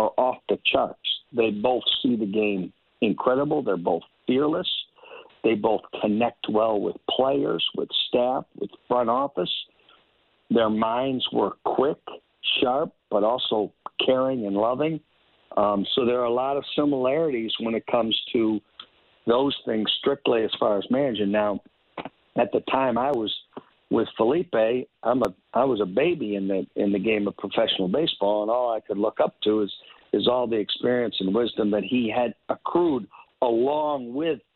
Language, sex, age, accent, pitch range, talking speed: English, male, 60-79, American, 100-125 Hz, 165 wpm